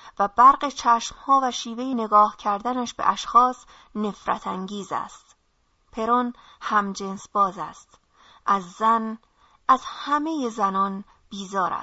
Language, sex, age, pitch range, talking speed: Persian, female, 30-49, 200-245 Hz, 115 wpm